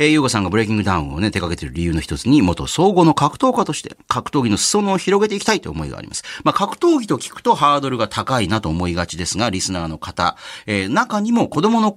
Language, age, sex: Japanese, 40-59, male